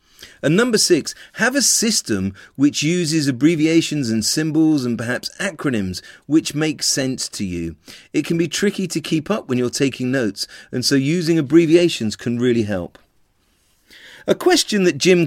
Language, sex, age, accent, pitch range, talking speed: English, male, 40-59, British, 105-150 Hz, 160 wpm